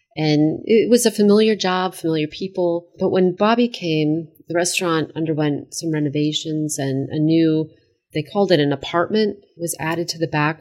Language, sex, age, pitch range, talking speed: English, female, 30-49, 145-170 Hz, 170 wpm